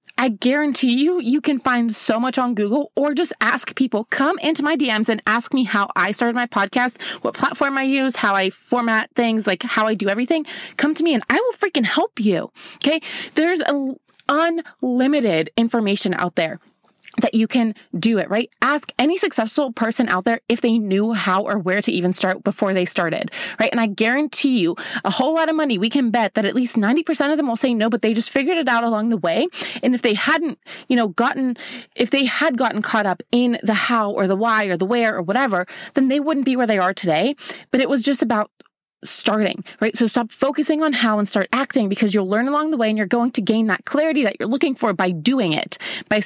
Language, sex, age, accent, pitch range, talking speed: English, female, 20-39, American, 215-275 Hz, 230 wpm